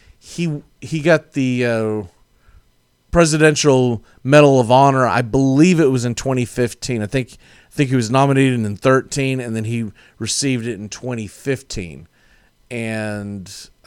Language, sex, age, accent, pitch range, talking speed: English, male, 40-59, American, 105-135 Hz, 140 wpm